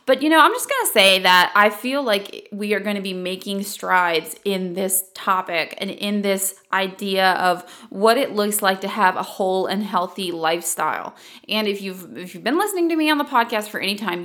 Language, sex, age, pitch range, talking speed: English, female, 20-39, 190-245 Hz, 215 wpm